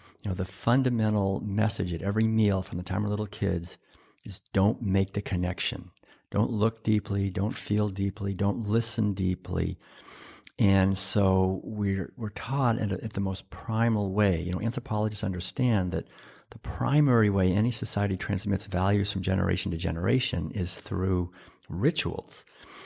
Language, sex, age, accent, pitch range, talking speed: English, male, 60-79, American, 90-110 Hz, 155 wpm